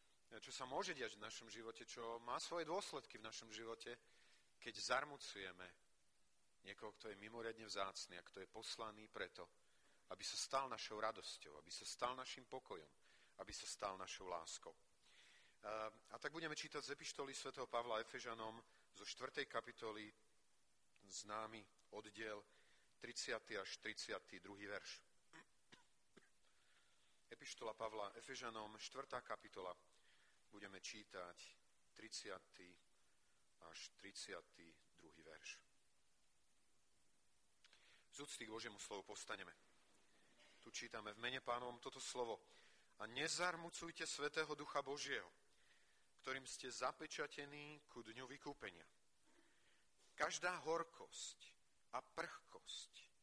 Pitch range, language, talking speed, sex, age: 110-140 Hz, Slovak, 110 wpm, male, 40-59